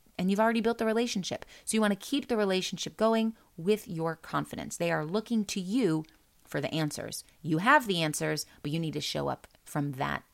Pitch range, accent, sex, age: 175-240 Hz, American, female, 30-49